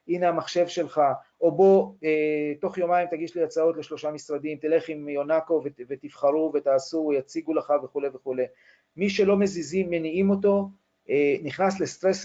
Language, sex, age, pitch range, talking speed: Hebrew, male, 40-59, 135-180 Hz, 135 wpm